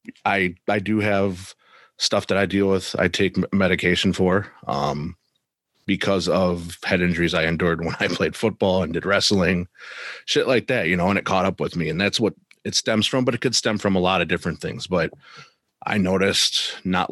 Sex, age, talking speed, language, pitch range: male, 30-49, 205 wpm, English, 90-105 Hz